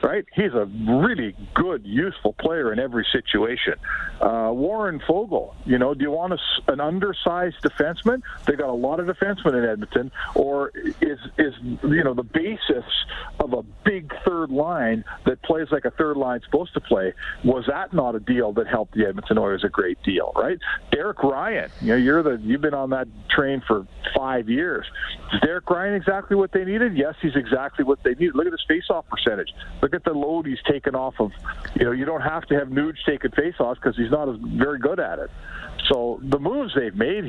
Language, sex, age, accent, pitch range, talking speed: English, male, 50-69, American, 130-180 Hz, 210 wpm